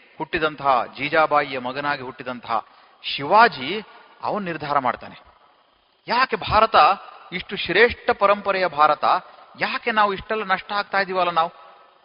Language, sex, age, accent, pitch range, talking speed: Kannada, male, 40-59, native, 150-210 Hz, 105 wpm